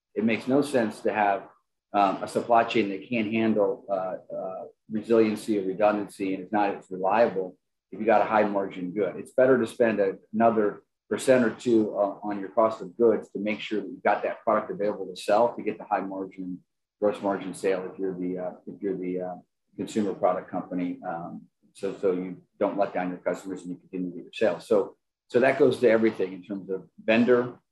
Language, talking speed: English, 220 wpm